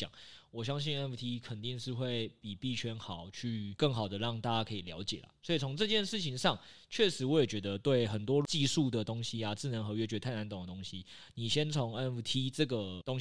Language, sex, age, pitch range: Chinese, male, 20-39, 110-145 Hz